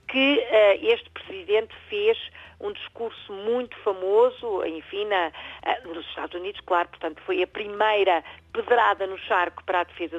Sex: female